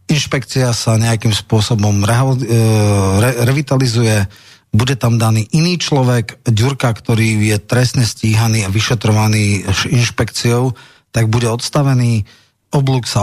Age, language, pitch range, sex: 40-59, Slovak, 105-125 Hz, male